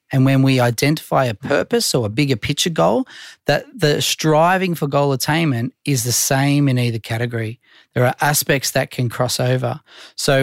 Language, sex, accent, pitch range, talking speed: English, male, Australian, 125-160 Hz, 180 wpm